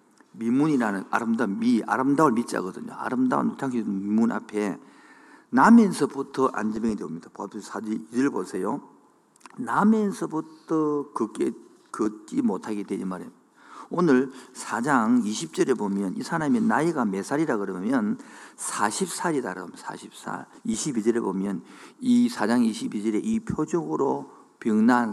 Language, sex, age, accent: Korean, male, 50-69, native